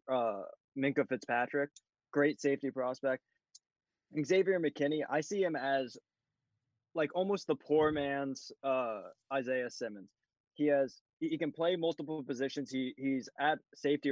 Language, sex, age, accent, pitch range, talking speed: English, male, 20-39, American, 125-145 Hz, 135 wpm